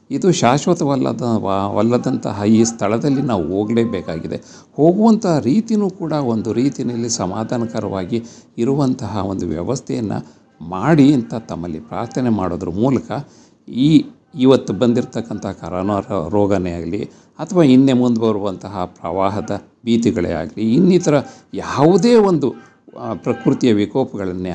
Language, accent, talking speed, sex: Kannada, native, 100 wpm, male